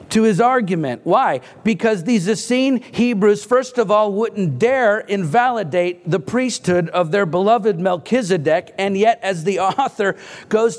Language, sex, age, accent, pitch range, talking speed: English, male, 50-69, American, 185-235 Hz, 145 wpm